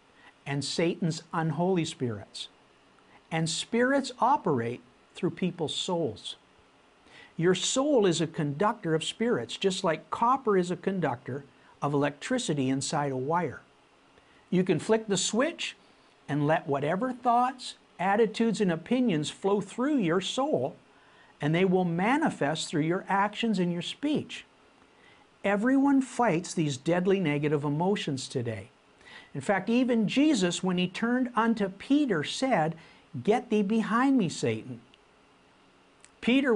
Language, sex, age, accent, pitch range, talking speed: English, male, 50-69, American, 150-220 Hz, 125 wpm